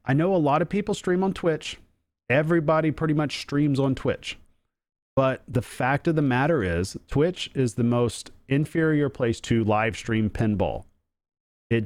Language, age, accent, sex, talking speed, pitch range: English, 40-59, American, male, 165 wpm, 115-150 Hz